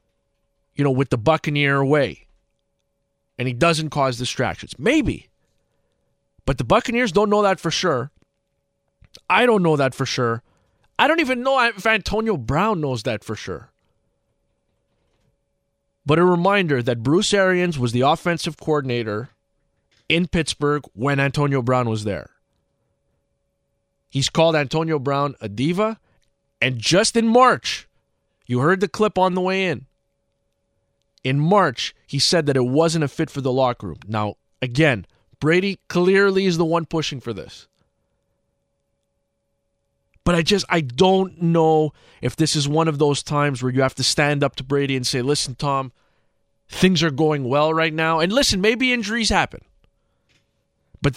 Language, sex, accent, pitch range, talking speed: English, male, American, 130-185 Hz, 155 wpm